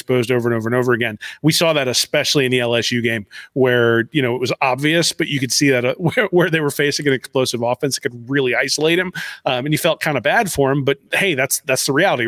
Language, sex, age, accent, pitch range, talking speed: English, male, 30-49, American, 125-155 Hz, 270 wpm